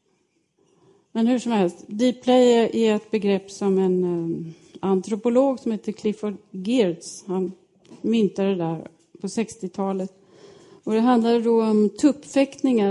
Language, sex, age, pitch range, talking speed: English, female, 30-49, 190-245 Hz, 135 wpm